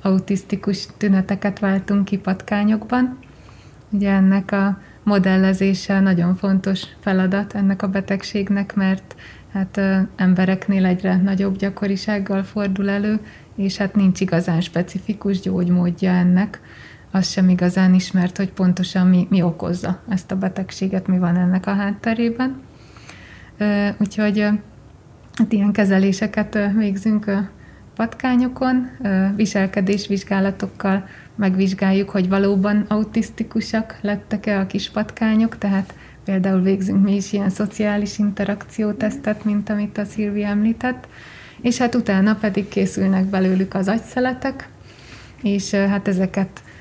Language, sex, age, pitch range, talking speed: Hungarian, female, 30-49, 190-205 Hz, 110 wpm